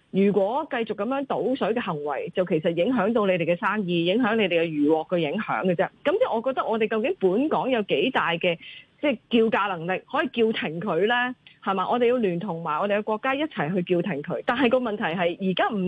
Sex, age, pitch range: female, 30-49, 185-260 Hz